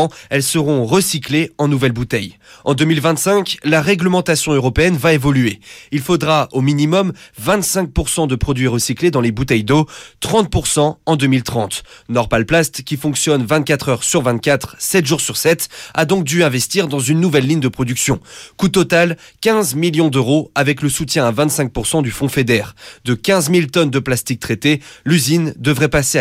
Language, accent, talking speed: French, French, 165 wpm